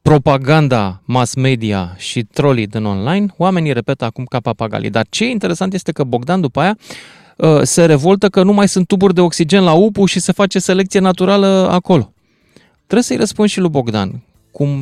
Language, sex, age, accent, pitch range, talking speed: Romanian, male, 30-49, native, 140-190 Hz, 180 wpm